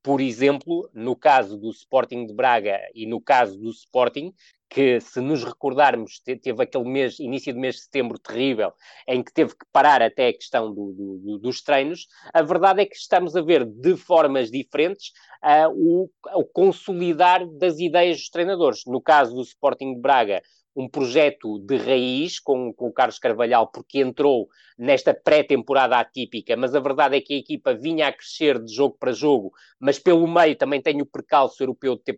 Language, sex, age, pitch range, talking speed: Portuguese, male, 20-39, 120-170 Hz, 190 wpm